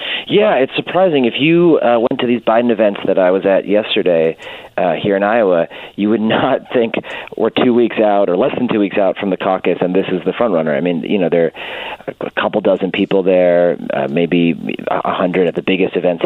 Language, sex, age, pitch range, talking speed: English, male, 30-49, 95-125 Hz, 225 wpm